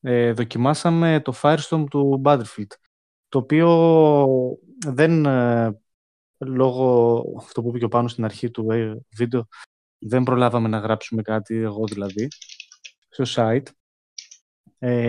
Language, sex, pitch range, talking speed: Greek, male, 115-145 Hz, 120 wpm